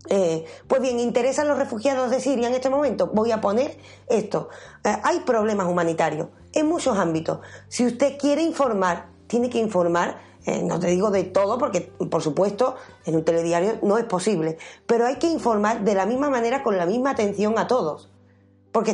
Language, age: Spanish, 30-49